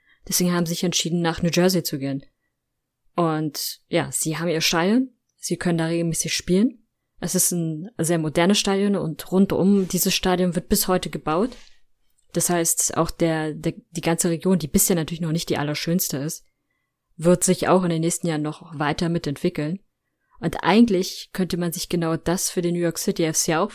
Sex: female